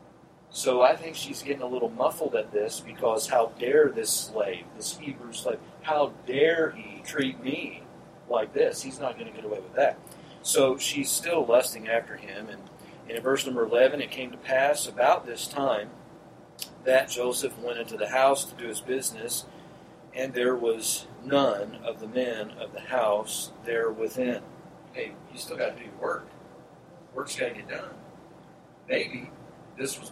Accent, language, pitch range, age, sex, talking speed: American, English, 125-160 Hz, 40-59, male, 175 wpm